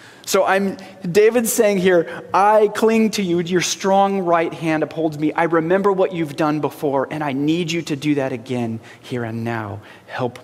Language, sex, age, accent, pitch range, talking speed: English, male, 30-49, American, 120-195 Hz, 190 wpm